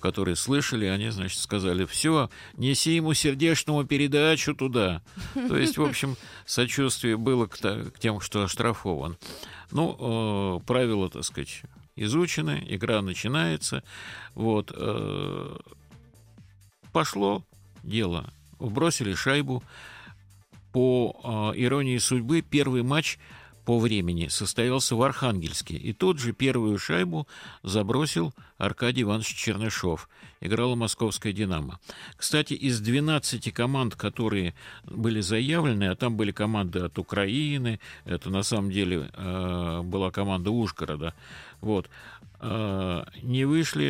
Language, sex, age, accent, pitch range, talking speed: Russian, male, 50-69, native, 95-125 Hz, 115 wpm